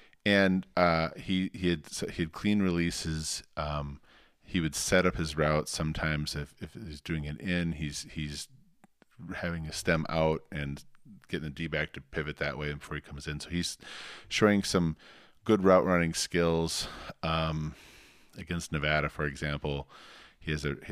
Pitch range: 70-85 Hz